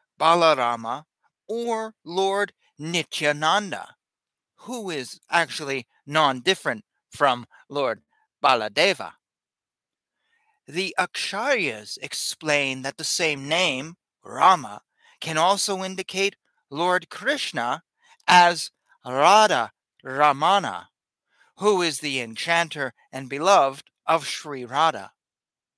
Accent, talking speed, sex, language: American, 85 wpm, male, English